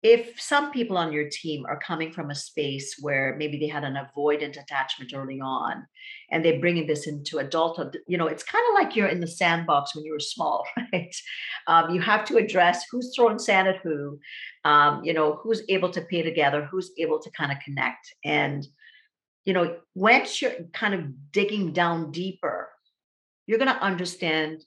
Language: English